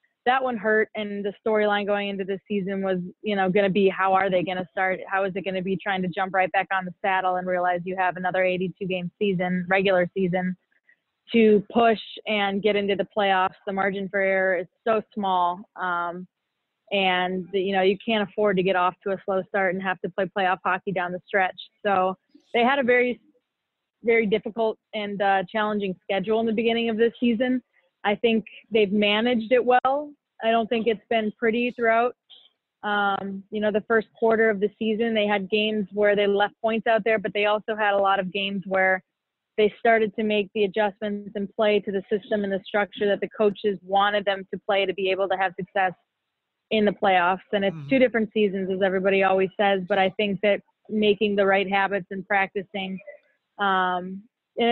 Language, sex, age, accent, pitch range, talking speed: English, female, 20-39, American, 190-220 Hz, 210 wpm